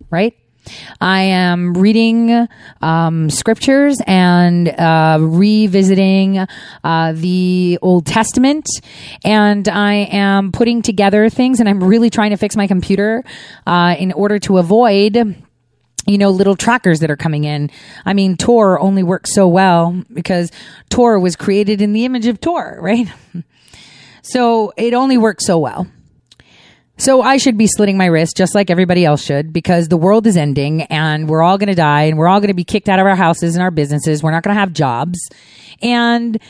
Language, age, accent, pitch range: English, 30-49, American, 180-235 Hz